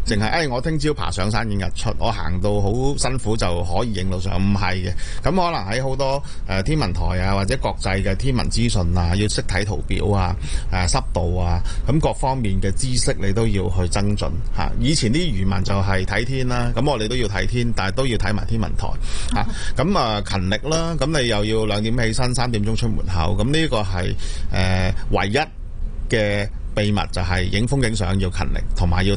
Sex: male